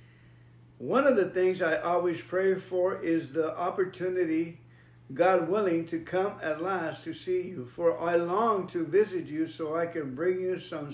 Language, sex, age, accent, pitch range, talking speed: English, male, 50-69, American, 145-180 Hz, 175 wpm